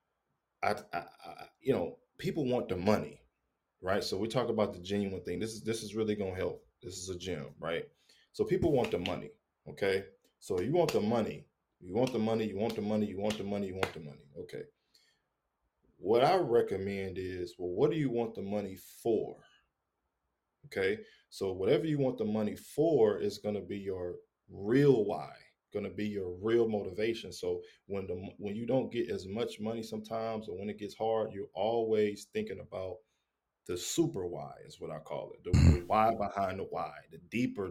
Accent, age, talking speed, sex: American, 20-39, 200 wpm, male